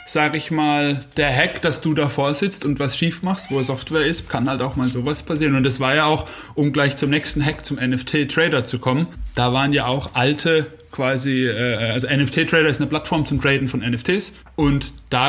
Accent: German